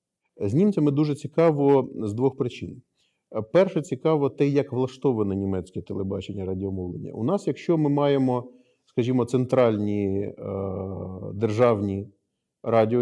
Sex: male